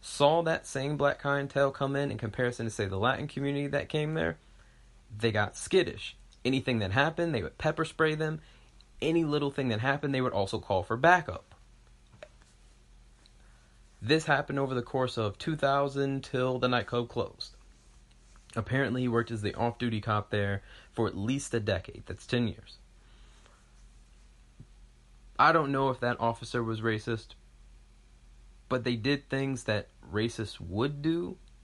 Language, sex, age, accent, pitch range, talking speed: English, male, 30-49, American, 95-130 Hz, 155 wpm